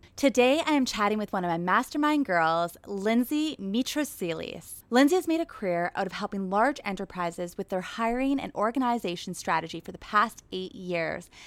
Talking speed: 175 wpm